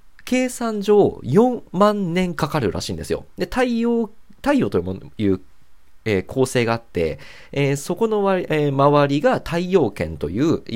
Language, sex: Japanese, male